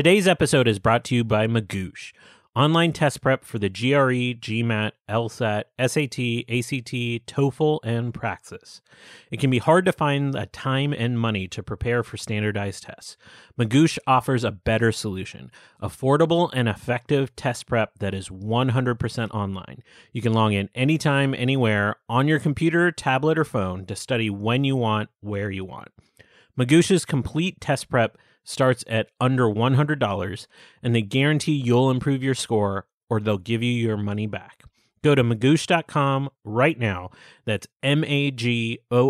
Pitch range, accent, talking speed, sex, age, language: 110-140 Hz, American, 160 wpm, male, 30-49, English